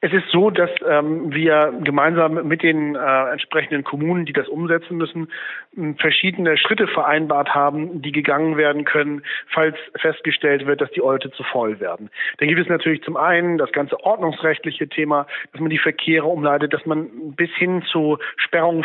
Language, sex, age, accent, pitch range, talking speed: German, male, 40-59, German, 150-170 Hz, 170 wpm